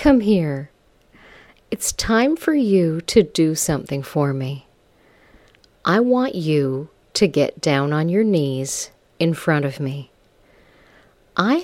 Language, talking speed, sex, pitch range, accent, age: English, 130 wpm, female, 145-195 Hz, American, 50-69